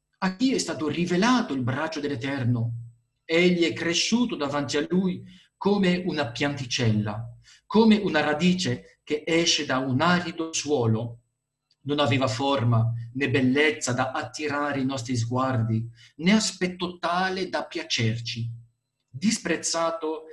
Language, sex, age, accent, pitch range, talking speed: Italian, male, 50-69, native, 120-170 Hz, 125 wpm